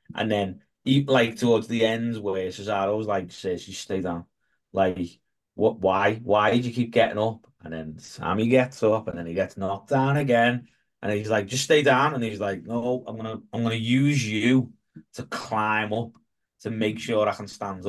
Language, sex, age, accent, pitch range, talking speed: English, male, 20-39, British, 95-120 Hz, 200 wpm